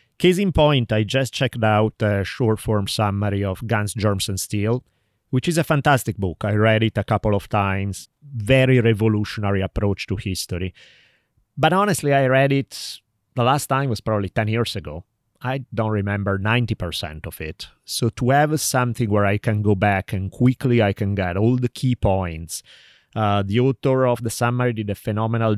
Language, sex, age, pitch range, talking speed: English, male, 30-49, 100-125 Hz, 185 wpm